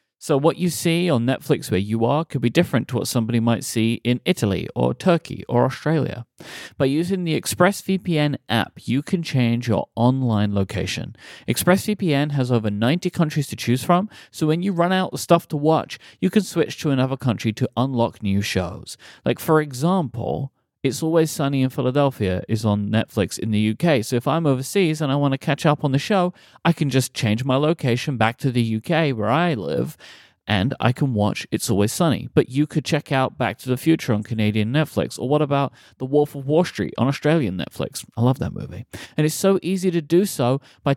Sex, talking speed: male, 210 wpm